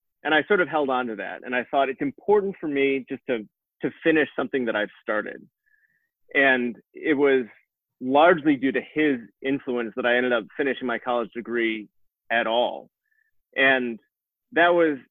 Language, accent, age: English, American, 30-49